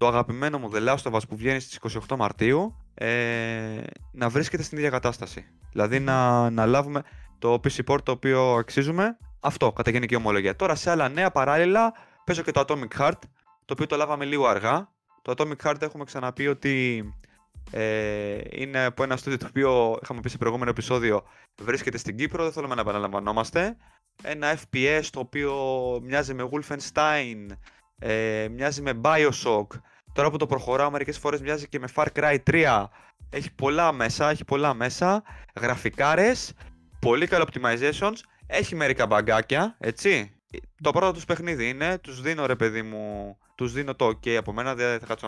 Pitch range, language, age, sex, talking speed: 120-155 Hz, Greek, 20-39, male, 165 wpm